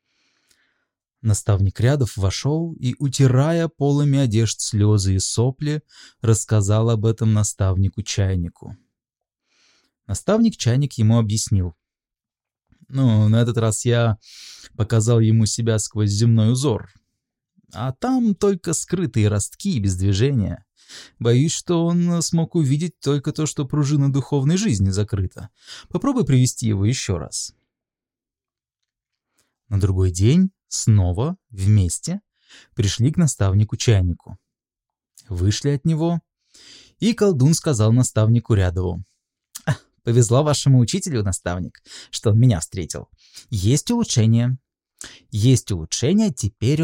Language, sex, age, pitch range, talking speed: Russian, male, 20-39, 105-145 Hz, 105 wpm